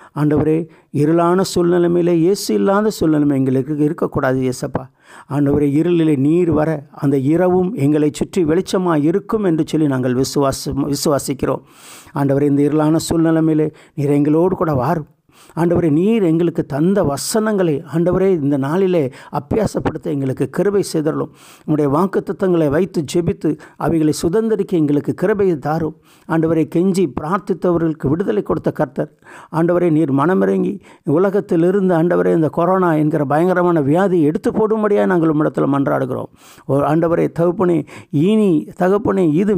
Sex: male